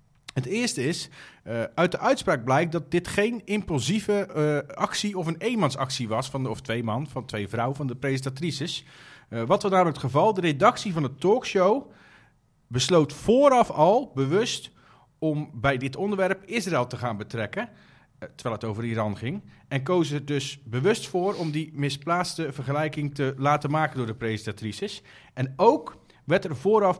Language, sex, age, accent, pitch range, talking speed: Dutch, male, 40-59, Dutch, 120-160 Hz, 165 wpm